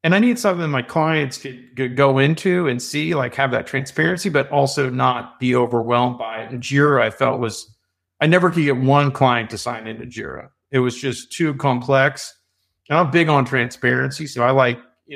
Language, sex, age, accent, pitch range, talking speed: English, male, 40-59, American, 120-150 Hz, 200 wpm